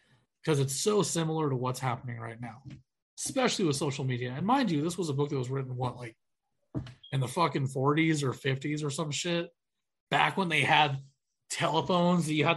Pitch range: 125-160 Hz